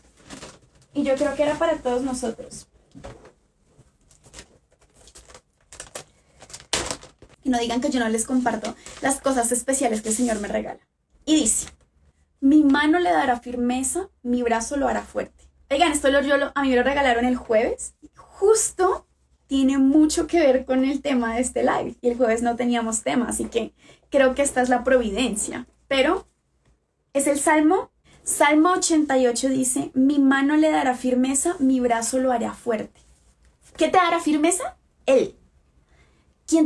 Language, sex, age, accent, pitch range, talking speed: Spanish, female, 20-39, Colombian, 240-300 Hz, 155 wpm